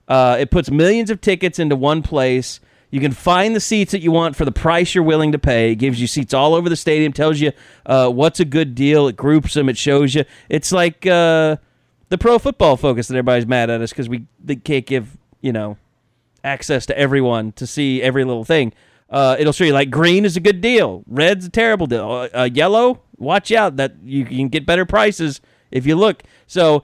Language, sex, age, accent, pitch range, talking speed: English, male, 30-49, American, 135-200 Hz, 225 wpm